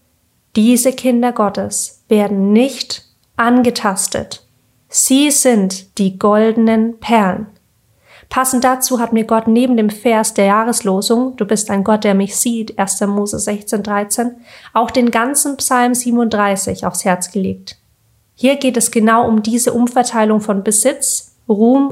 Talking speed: 135 wpm